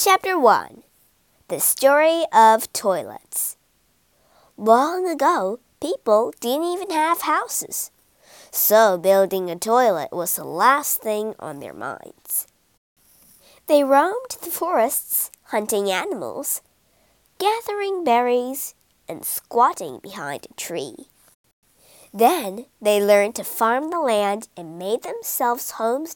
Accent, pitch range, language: American, 205-305 Hz, Chinese